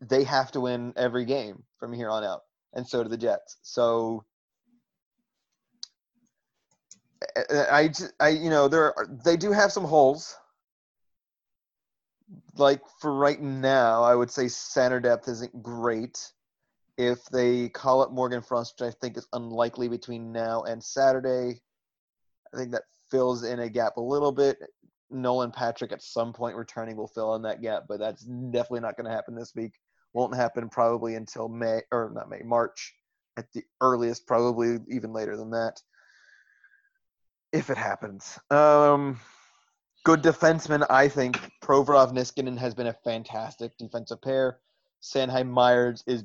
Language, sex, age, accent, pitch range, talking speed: English, male, 30-49, American, 115-135 Hz, 155 wpm